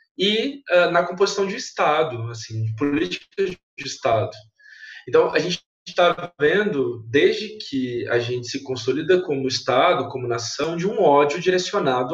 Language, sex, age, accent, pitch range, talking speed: Portuguese, male, 20-39, Brazilian, 130-185 Hz, 140 wpm